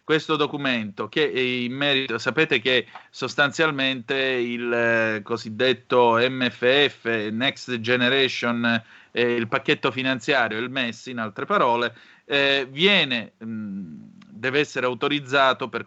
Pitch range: 120-140 Hz